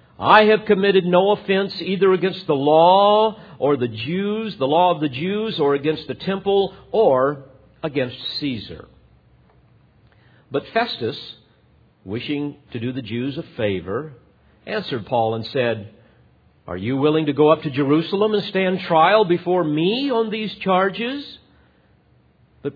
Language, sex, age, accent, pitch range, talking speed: English, male, 50-69, American, 110-165 Hz, 140 wpm